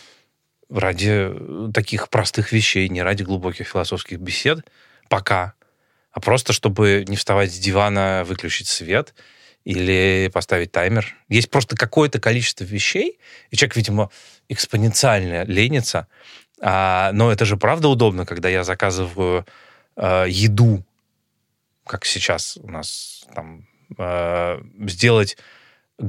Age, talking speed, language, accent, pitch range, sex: 20-39, 110 wpm, Russian, native, 95-115 Hz, male